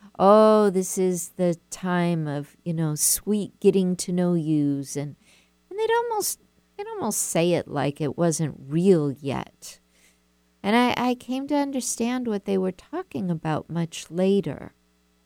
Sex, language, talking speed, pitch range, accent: female, English, 155 wpm, 145-215 Hz, American